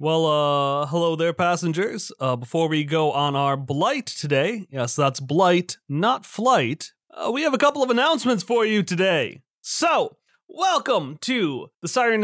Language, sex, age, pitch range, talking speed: English, male, 30-49, 150-220 Hz, 160 wpm